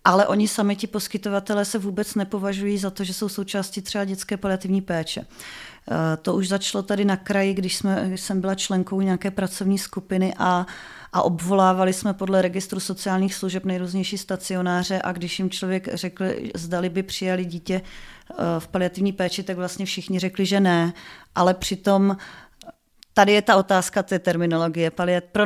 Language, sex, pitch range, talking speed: Czech, female, 175-195 Hz, 165 wpm